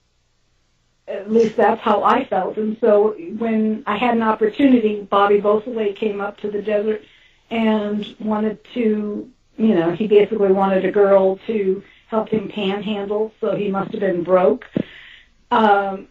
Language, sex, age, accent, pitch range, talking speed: English, female, 50-69, American, 190-220 Hz, 145 wpm